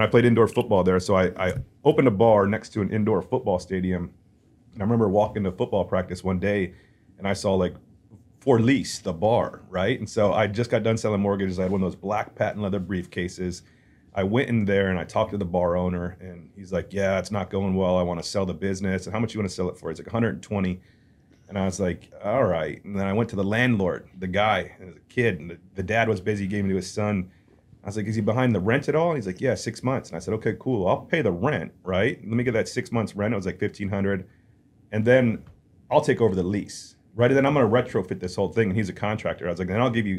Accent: American